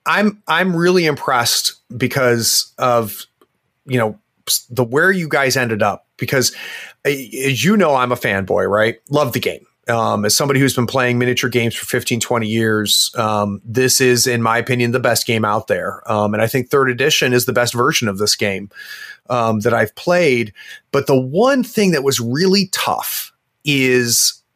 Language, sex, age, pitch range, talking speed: English, male, 30-49, 115-145 Hz, 180 wpm